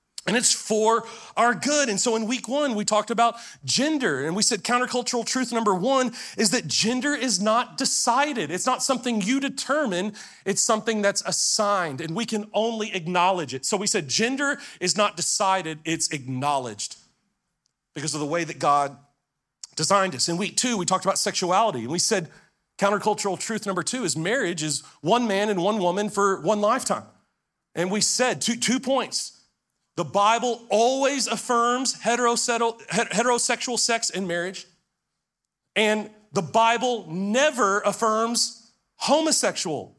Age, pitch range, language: 40-59, 170-235 Hz, English